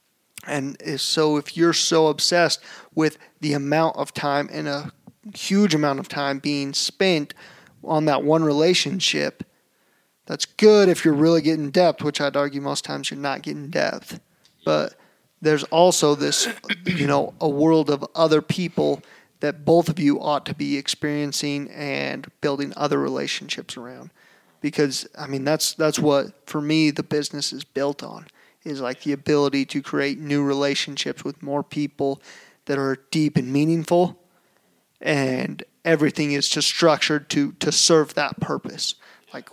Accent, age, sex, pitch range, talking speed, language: American, 30-49, male, 145-165 Hz, 155 wpm, English